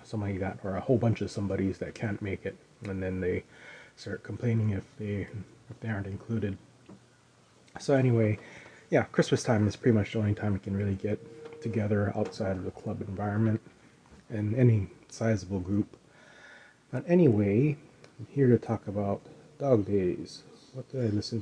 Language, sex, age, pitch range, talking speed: English, male, 30-49, 100-125 Hz, 170 wpm